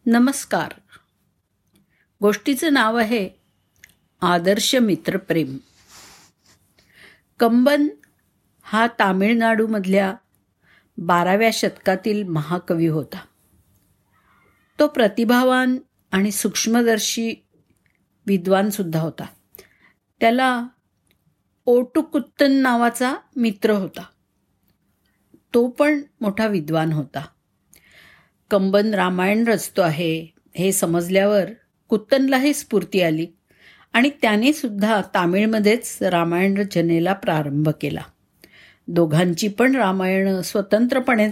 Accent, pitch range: native, 185-235 Hz